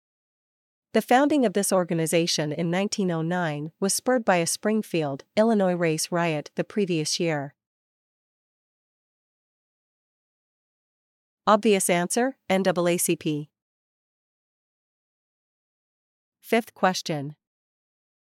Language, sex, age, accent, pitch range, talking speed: English, female, 40-59, American, 160-200 Hz, 75 wpm